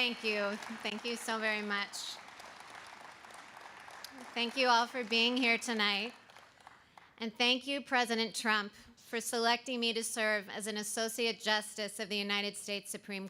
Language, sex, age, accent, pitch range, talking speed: English, female, 30-49, American, 210-245 Hz, 150 wpm